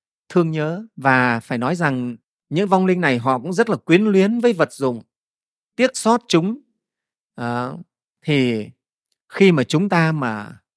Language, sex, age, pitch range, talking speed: Vietnamese, male, 30-49, 125-180 Hz, 160 wpm